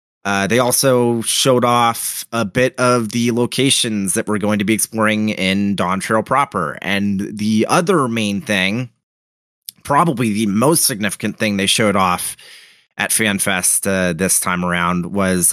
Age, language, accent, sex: 30-49, English, American, male